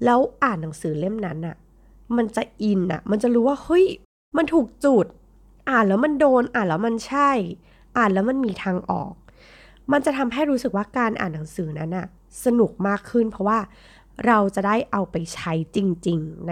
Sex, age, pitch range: female, 20-39, 170-235 Hz